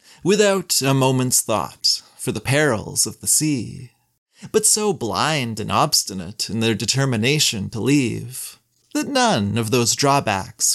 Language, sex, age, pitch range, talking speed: English, male, 30-49, 115-165 Hz, 140 wpm